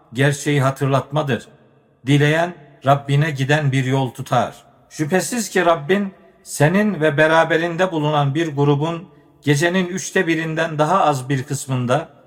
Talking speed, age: 115 wpm, 50-69